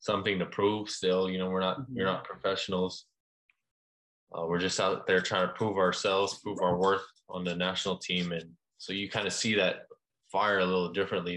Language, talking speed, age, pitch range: Filipino, 200 wpm, 20-39, 90-95 Hz